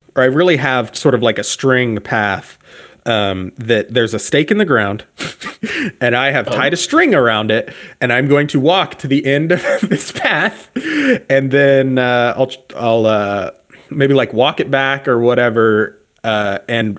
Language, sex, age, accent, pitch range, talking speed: English, male, 30-49, American, 110-135 Hz, 185 wpm